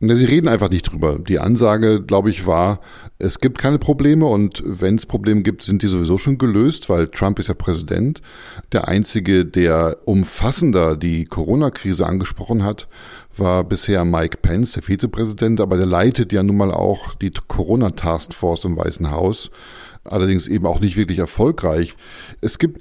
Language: German